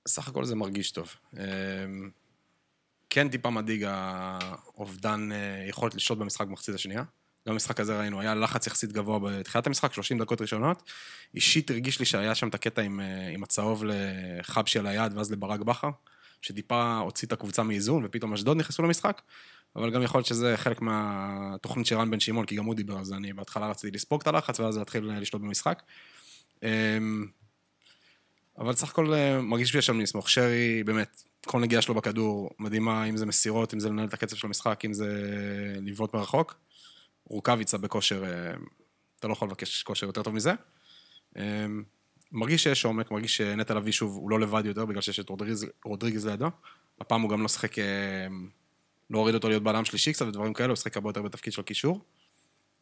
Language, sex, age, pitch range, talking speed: Hebrew, male, 20-39, 100-115 Hz, 175 wpm